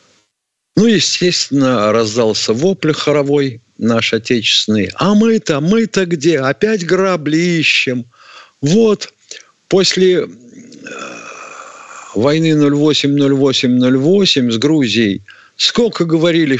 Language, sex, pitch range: Russian, male, 115-170 Hz